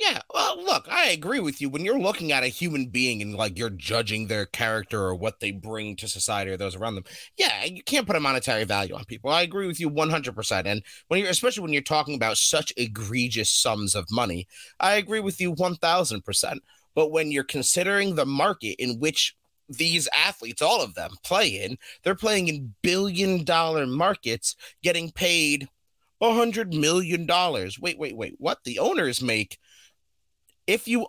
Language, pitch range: English, 115-185 Hz